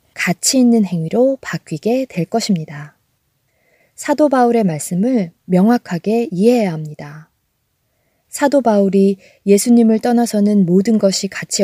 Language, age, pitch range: Korean, 20-39, 170-225 Hz